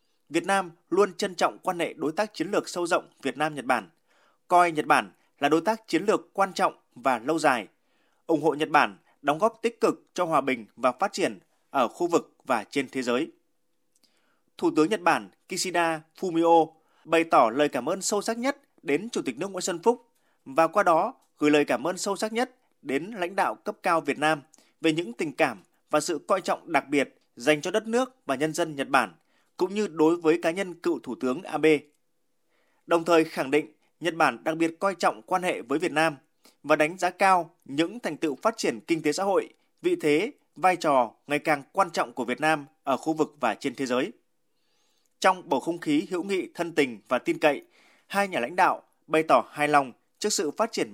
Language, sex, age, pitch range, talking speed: Vietnamese, male, 20-39, 150-195 Hz, 220 wpm